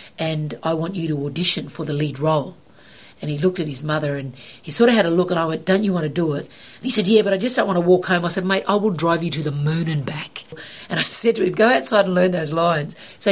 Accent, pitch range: Australian, 160-210 Hz